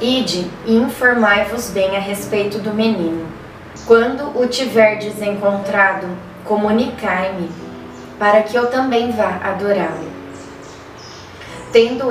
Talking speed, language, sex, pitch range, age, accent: 100 wpm, Portuguese, female, 190-235 Hz, 20-39, Brazilian